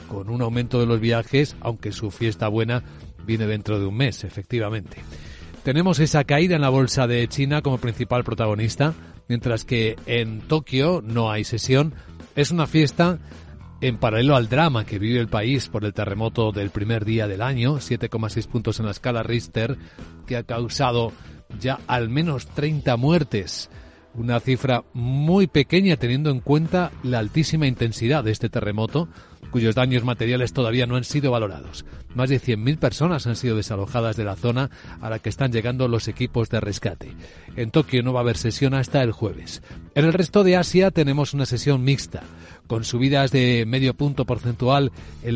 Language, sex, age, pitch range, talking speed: Spanish, male, 40-59, 110-135 Hz, 175 wpm